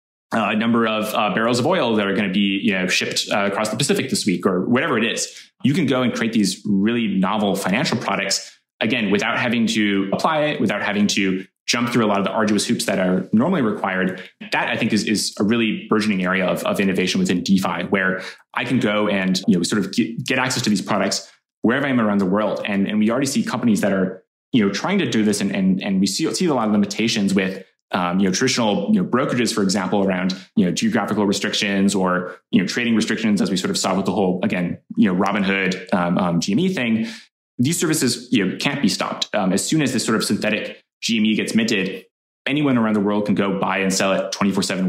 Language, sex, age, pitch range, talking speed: English, male, 20-39, 95-115 Hz, 240 wpm